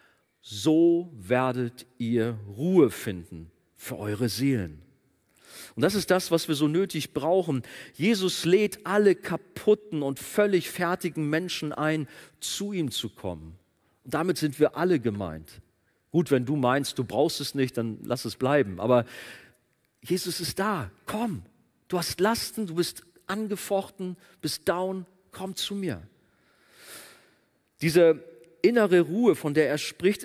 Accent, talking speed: German, 140 wpm